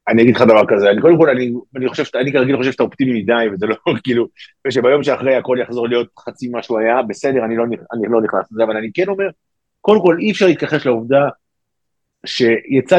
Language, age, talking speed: Hebrew, 50-69, 220 wpm